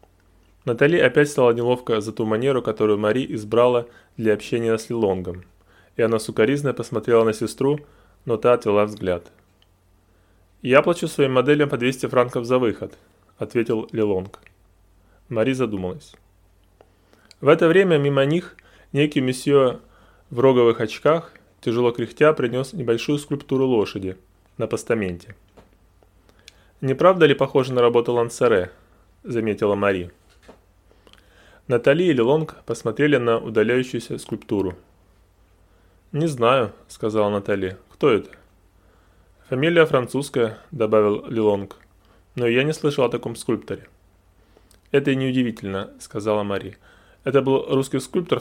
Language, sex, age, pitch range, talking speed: Russian, male, 20-39, 95-135 Hz, 130 wpm